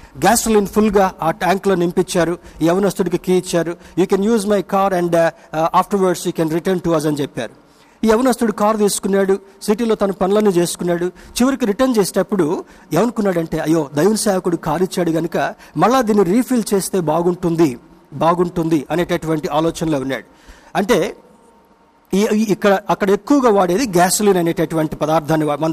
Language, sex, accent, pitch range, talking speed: Telugu, male, native, 170-210 Hz, 145 wpm